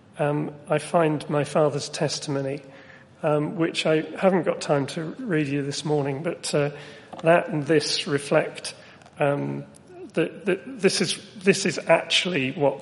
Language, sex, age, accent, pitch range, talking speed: English, male, 40-59, British, 140-160 Hz, 150 wpm